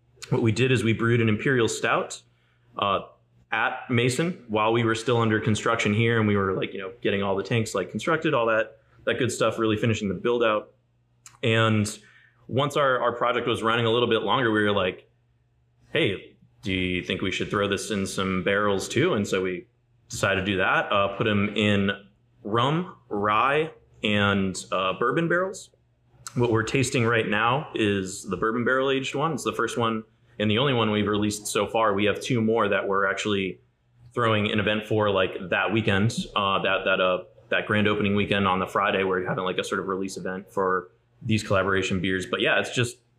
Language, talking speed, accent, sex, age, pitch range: English, 210 wpm, American, male, 20-39, 100-115 Hz